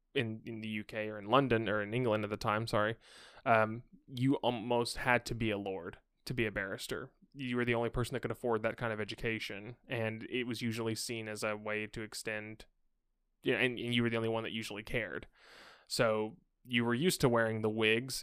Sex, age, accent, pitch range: male, 20-39, American, 110-125 Hz